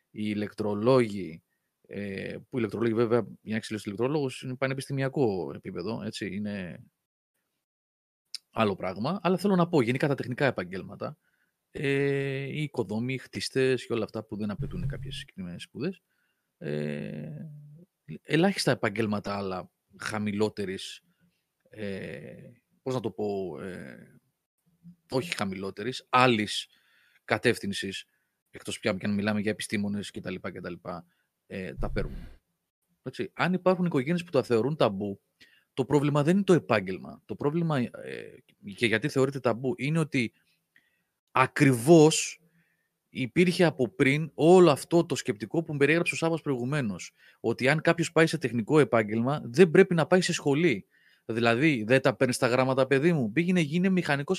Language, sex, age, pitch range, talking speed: Greek, male, 30-49, 110-165 Hz, 140 wpm